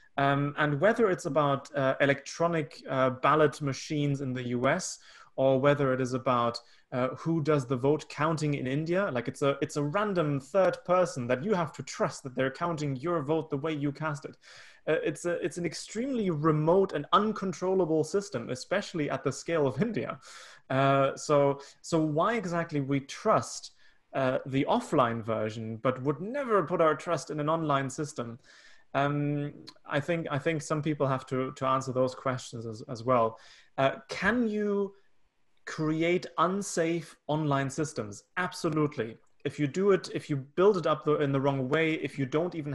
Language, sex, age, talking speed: English, male, 30-49, 180 wpm